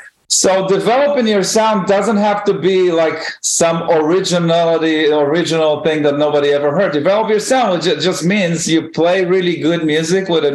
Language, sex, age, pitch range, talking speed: English, male, 40-59, 145-190 Hz, 170 wpm